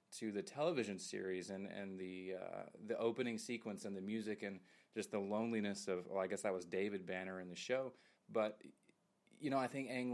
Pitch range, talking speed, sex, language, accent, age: 95-115 Hz, 205 wpm, male, English, American, 30-49